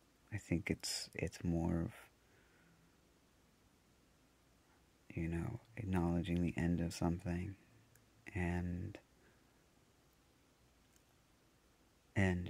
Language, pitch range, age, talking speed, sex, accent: English, 85-105 Hz, 30-49, 70 wpm, male, American